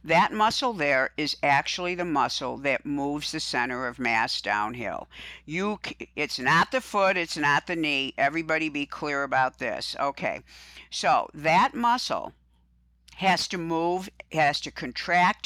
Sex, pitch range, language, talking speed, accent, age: female, 135-200 Hz, English, 150 wpm, American, 60-79